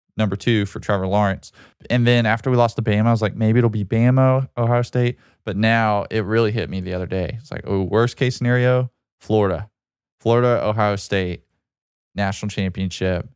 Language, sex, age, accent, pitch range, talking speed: English, male, 20-39, American, 95-115 Hz, 190 wpm